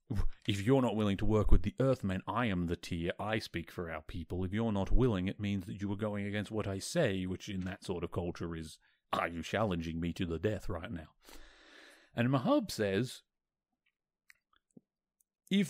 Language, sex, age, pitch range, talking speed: English, male, 30-49, 95-125 Hz, 200 wpm